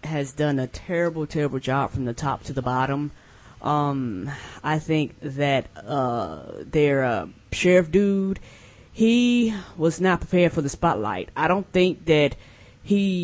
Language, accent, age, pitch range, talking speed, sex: English, American, 20-39, 155-195 Hz, 150 wpm, female